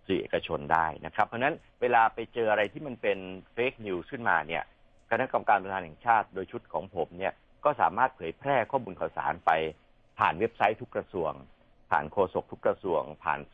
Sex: male